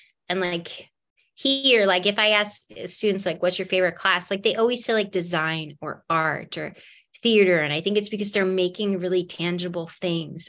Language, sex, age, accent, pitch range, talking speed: English, female, 20-39, American, 175-210 Hz, 190 wpm